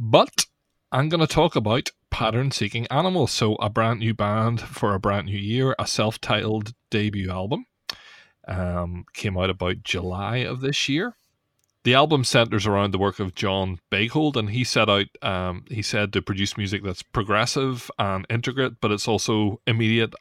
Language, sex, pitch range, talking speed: English, male, 95-115 Hz, 170 wpm